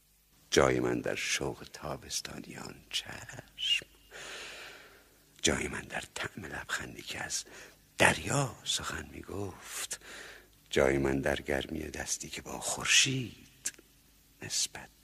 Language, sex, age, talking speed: Persian, male, 60-79, 100 wpm